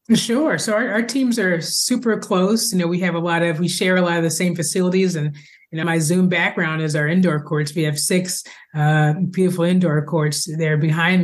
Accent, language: American, English